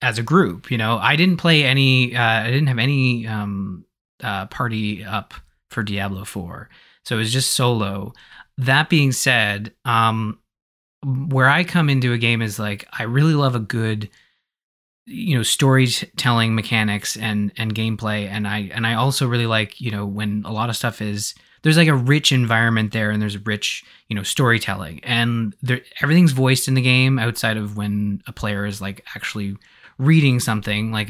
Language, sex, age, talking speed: English, male, 20-39, 185 wpm